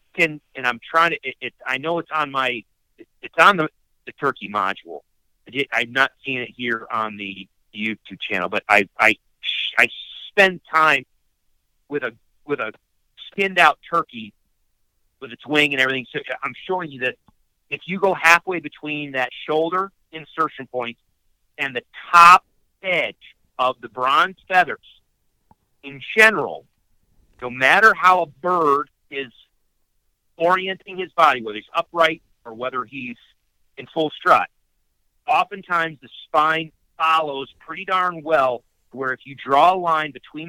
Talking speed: 155 wpm